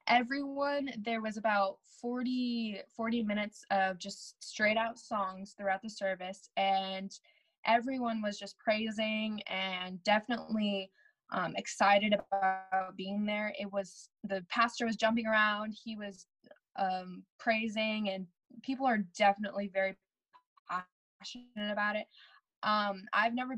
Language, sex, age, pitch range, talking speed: English, female, 10-29, 195-230 Hz, 125 wpm